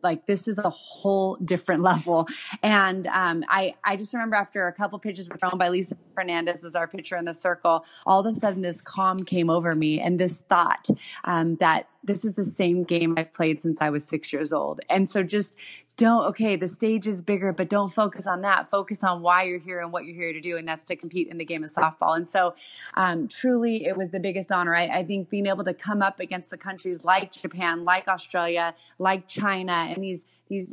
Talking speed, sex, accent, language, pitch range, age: 230 wpm, female, American, English, 175-200 Hz, 30-49